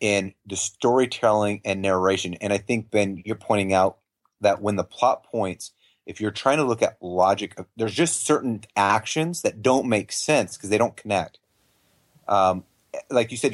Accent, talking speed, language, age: American, 175 wpm, English, 30-49